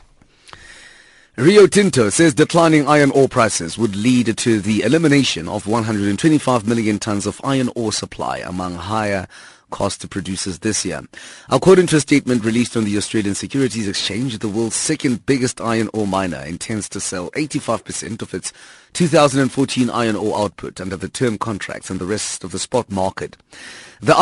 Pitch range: 100-130 Hz